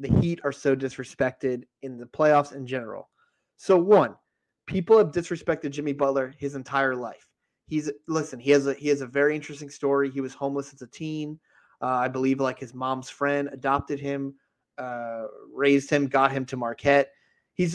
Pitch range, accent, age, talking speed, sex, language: 135-165 Hz, American, 30-49, 185 wpm, male, English